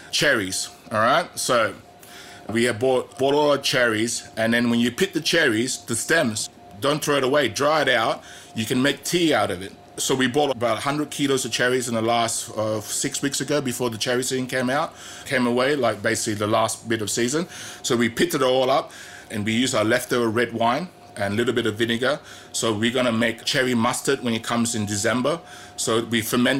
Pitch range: 115-135 Hz